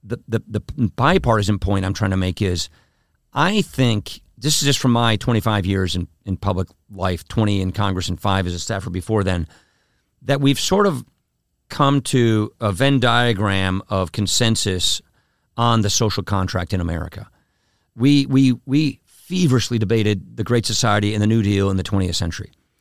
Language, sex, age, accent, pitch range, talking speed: English, male, 50-69, American, 95-120 Hz, 175 wpm